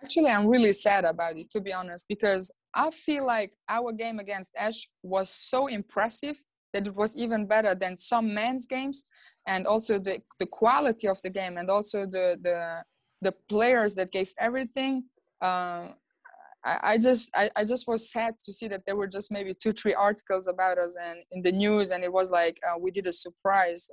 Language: English